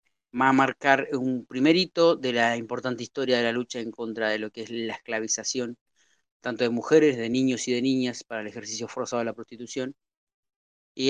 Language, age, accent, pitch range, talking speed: Spanish, 30-49, Argentinian, 120-135 Hz, 200 wpm